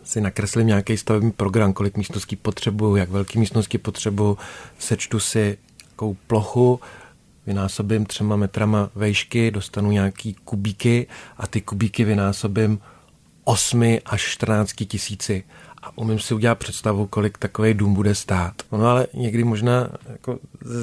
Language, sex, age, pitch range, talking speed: Czech, male, 40-59, 105-125 Hz, 135 wpm